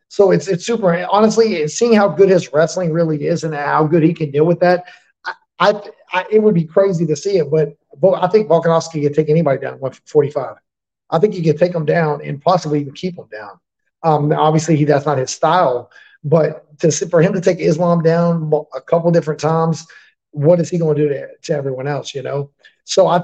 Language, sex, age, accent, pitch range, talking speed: English, male, 30-49, American, 145-170 Hz, 225 wpm